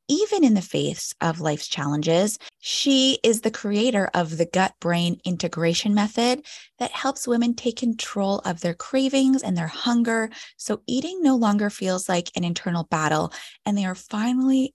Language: English